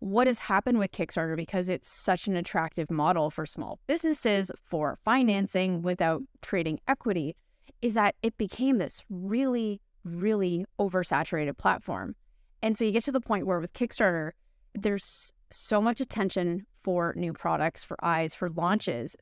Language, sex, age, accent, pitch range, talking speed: English, female, 20-39, American, 170-210 Hz, 155 wpm